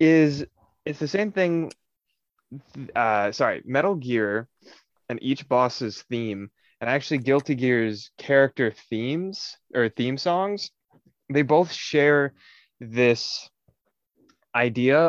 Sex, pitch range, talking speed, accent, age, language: male, 115-145 Hz, 105 wpm, American, 20-39, English